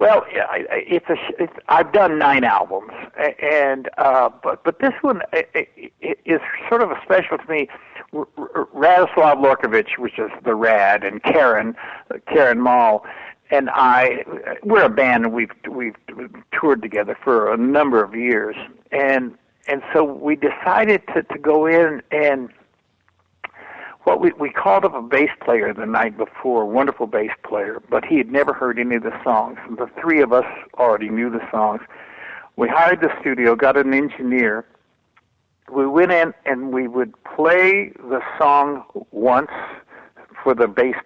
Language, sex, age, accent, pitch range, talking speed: English, male, 60-79, American, 130-180 Hz, 170 wpm